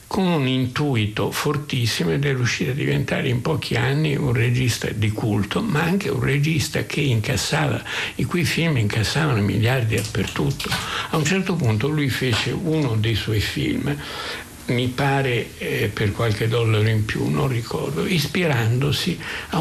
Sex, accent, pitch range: male, native, 110-145 Hz